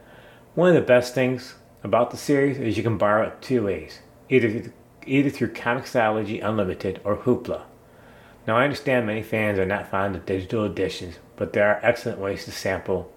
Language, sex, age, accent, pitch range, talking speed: English, male, 30-49, American, 105-125 Hz, 180 wpm